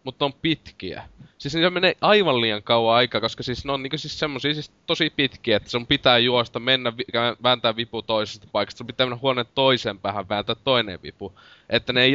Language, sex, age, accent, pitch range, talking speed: Finnish, male, 20-39, native, 105-125 Hz, 205 wpm